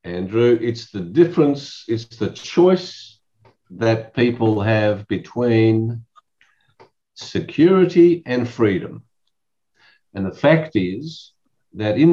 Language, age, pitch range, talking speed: English, 50-69, 105-145 Hz, 100 wpm